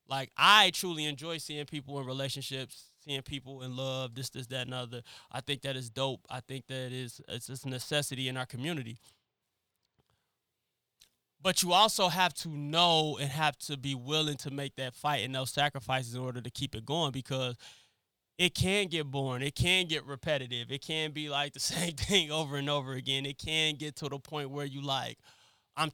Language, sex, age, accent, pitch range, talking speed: English, male, 20-39, American, 130-150 Hz, 200 wpm